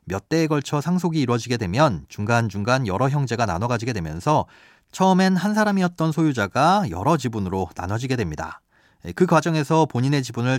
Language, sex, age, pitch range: Korean, male, 30-49, 110-165 Hz